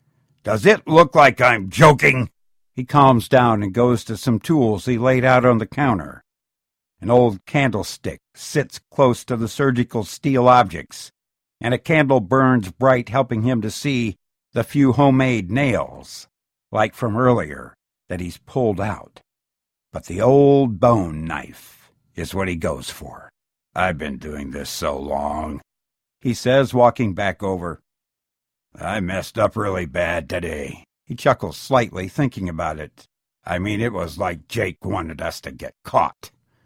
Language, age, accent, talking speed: English, 60-79, American, 155 wpm